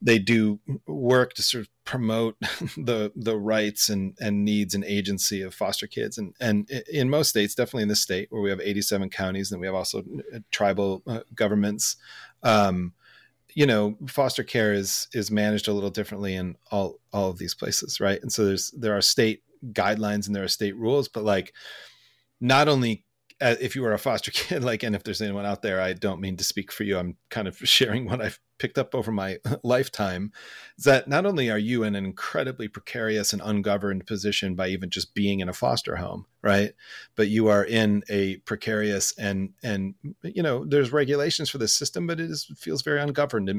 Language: English